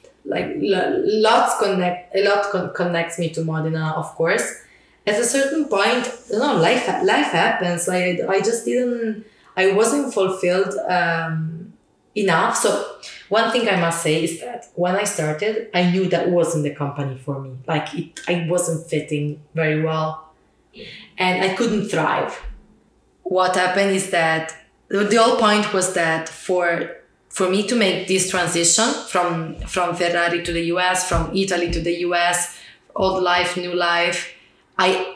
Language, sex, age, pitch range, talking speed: English, female, 20-39, 170-200 Hz, 155 wpm